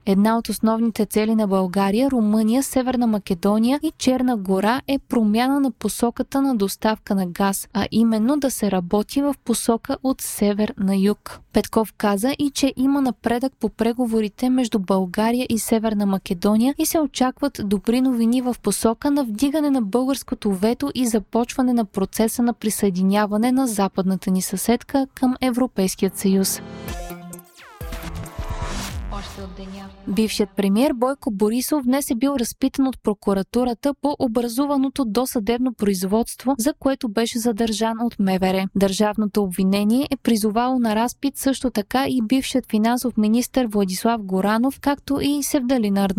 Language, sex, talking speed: Bulgarian, female, 140 wpm